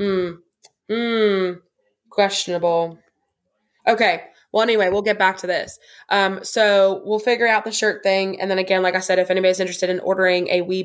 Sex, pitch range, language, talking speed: female, 185-210 Hz, English, 175 wpm